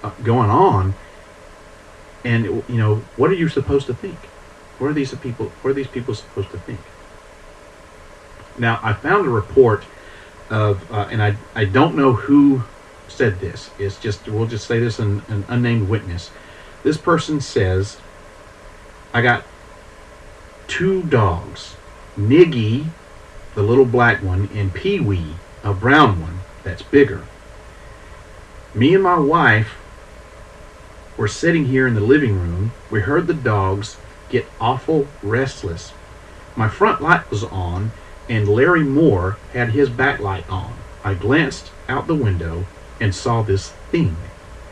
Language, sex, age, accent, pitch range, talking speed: English, male, 40-59, American, 95-130 Hz, 140 wpm